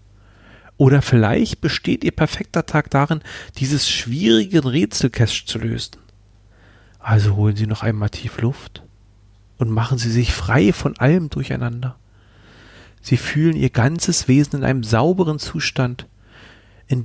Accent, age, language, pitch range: German, 40-59, German, 100-135 Hz